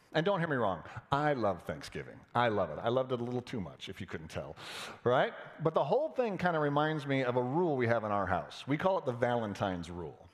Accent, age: American, 40-59